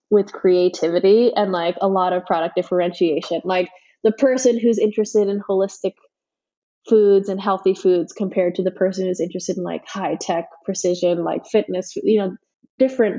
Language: English